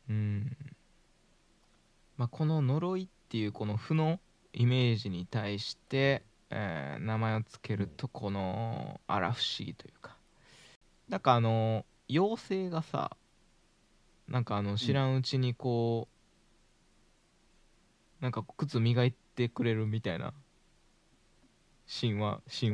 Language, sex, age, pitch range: Japanese, male, 20-39, 110-135 Hz